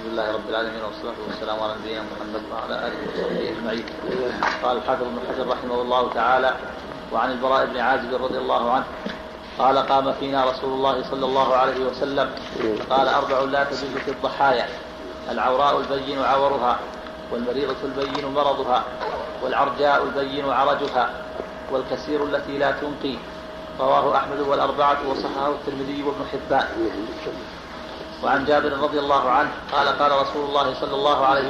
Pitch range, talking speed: 130-145 Hz, 145 wpm